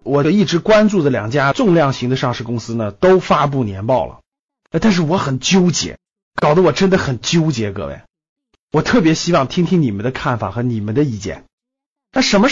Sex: male